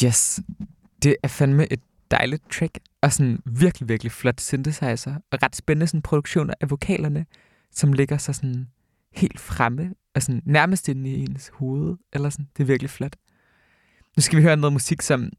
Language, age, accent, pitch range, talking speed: Danish, 20-39, native, 125-145 Hz, 180 wpm